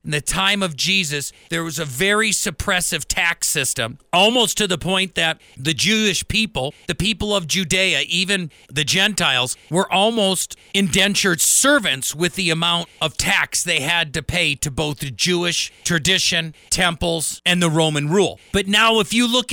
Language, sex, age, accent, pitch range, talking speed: English, male, 50-69, American, 160-195 Hz, 170 wpm